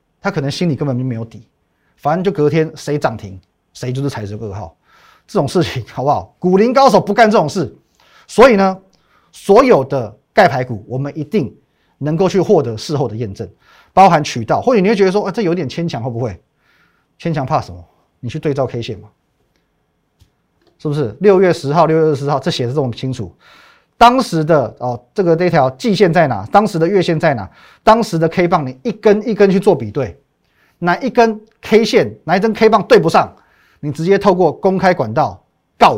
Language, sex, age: Chinese, male, 30-49